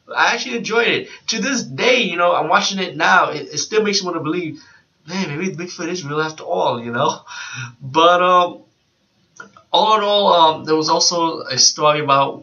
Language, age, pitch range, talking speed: English, 20-39, 125-155 Hz, 205 wpm